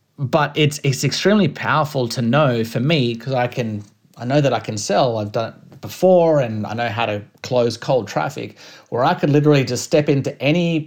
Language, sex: English, male